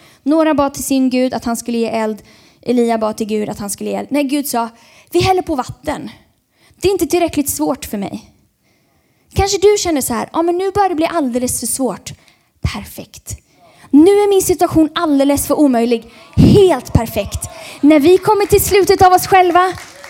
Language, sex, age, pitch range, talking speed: Swedish, female, 20-39, 250-360 Hz, 195 wpm